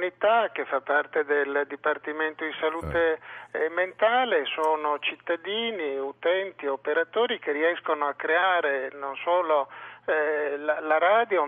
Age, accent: 50-69, native